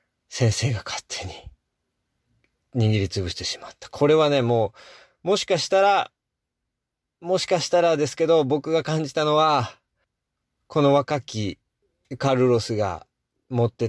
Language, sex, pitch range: Japanese, male, 110-145 Hz